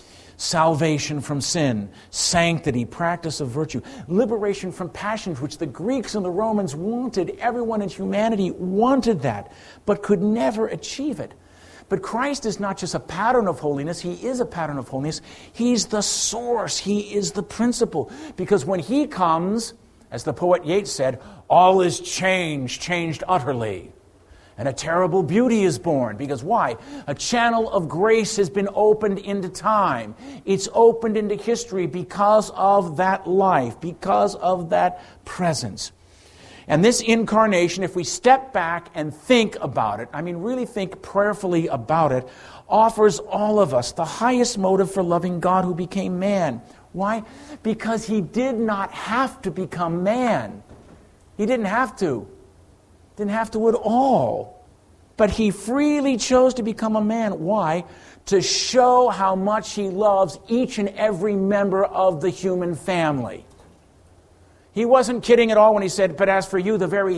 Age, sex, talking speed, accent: 50-69, male, 160 wpm, American